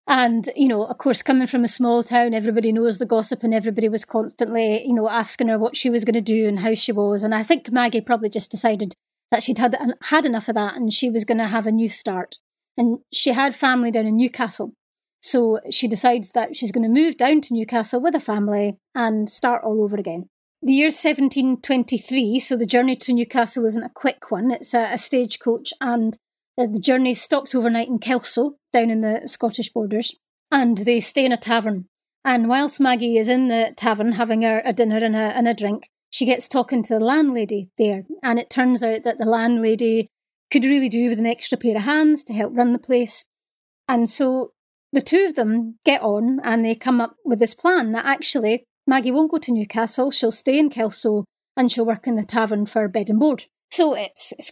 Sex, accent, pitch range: female, British, 225-255 Hz